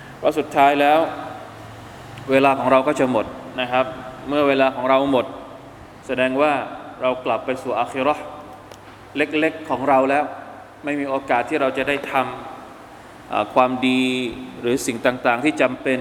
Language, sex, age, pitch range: Thai, male, 20-39, 130-150 Hz